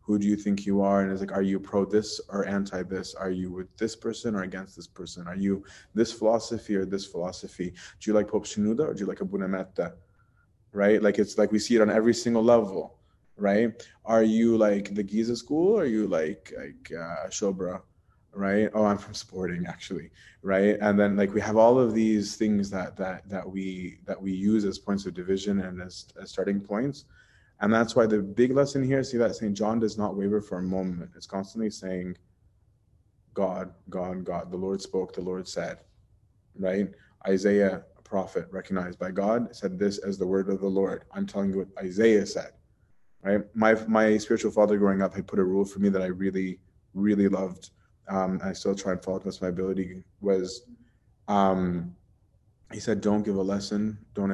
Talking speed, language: 205 wpm, English